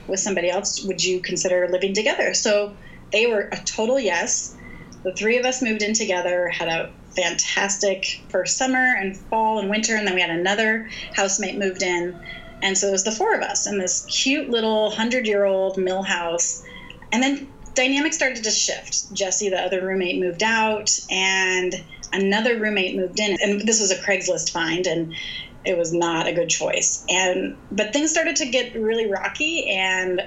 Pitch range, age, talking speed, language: 180-210 Hz, 30-49, 185 wpm, English